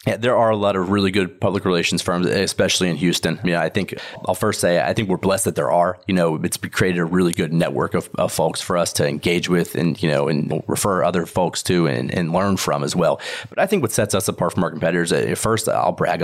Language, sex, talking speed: English, male, 265 wpm